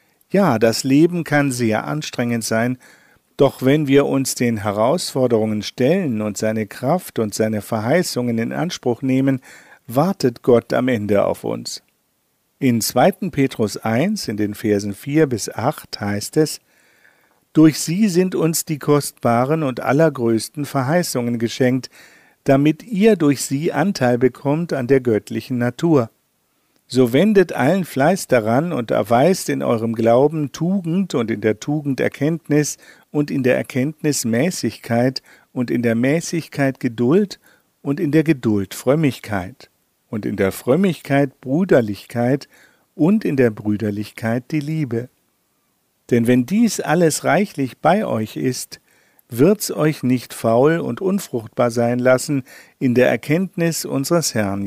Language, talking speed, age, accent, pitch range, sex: German, 135 wpm, 50-69, German, 115-155 Hz, male